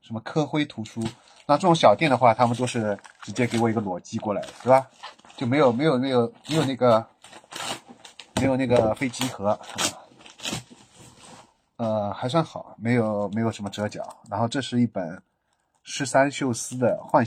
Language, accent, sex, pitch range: Chinese, native, male, 105-125 Hz